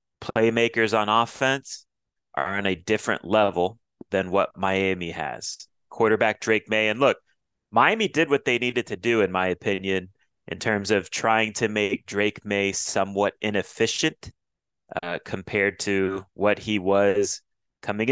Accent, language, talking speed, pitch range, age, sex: American, English, 145 wpm, 95-115 Hz, 30-49, male